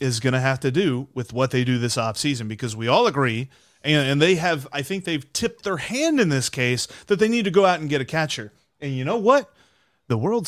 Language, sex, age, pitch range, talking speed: English, male, 30-49, 125-195 Hz, 265 wpm